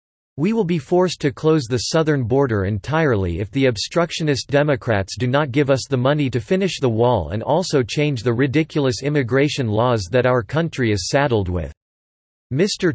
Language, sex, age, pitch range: English, male, 40-59, 115-150 Hz